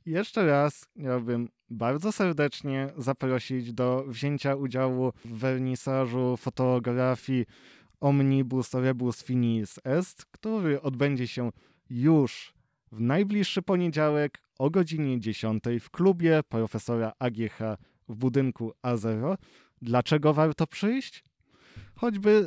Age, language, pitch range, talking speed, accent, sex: 20-39, Polish, 125-155 Hz, 100 wpm, native, male